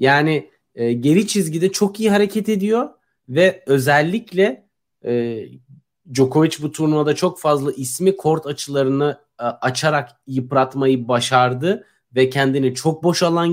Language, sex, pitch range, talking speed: Turkish, male, 130-180 Hz, 125 wpm